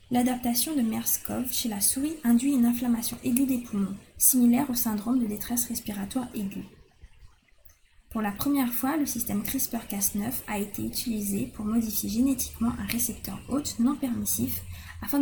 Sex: female